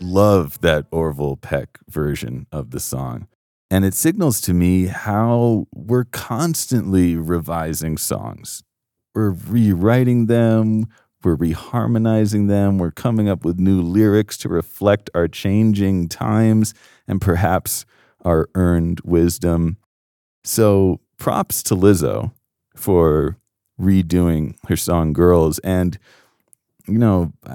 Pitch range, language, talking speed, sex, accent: 80-110 Hz, English, 115 wpm, male, American